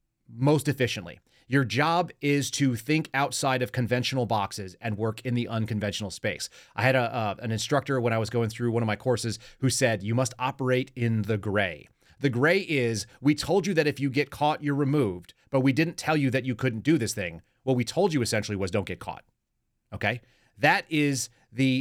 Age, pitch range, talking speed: 30-49, 110-140 Hz, 210 wpm